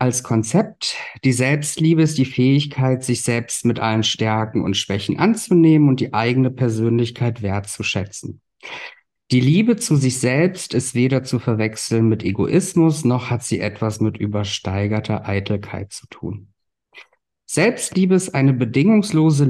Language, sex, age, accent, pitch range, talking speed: German, male, 50-69, German, 110-140 Hz, 135 wpm